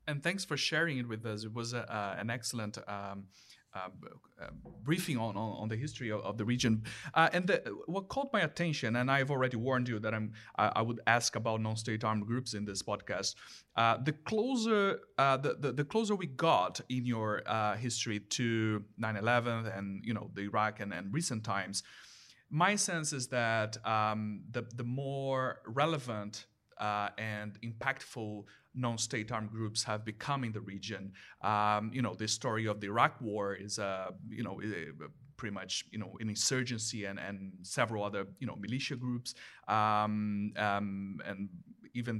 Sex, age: male, 30-49